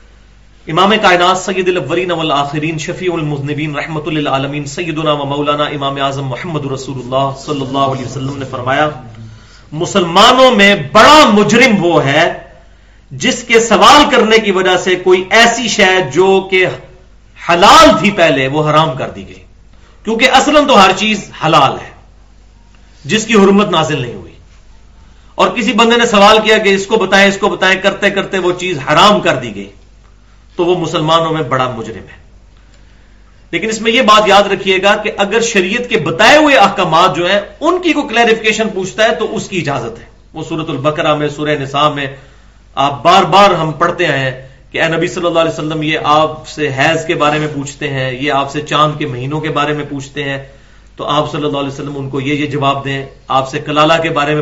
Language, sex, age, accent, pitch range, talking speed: English, male, 40-59, Indian, 135-190 Hz, 145 wpm